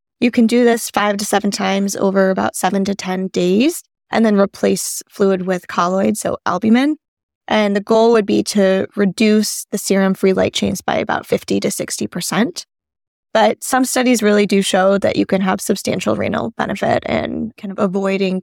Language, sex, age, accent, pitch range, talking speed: English, female, 10-29, American, 195-245 Hz, 180 wpm